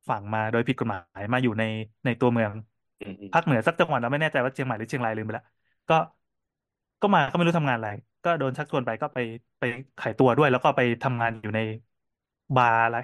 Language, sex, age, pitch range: Thai, male, 20-39, 120-155 Hz